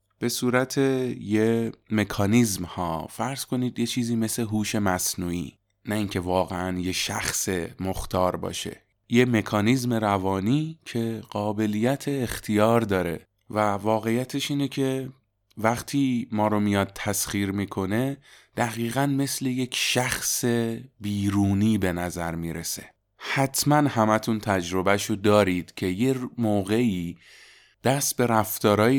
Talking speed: 110 wpm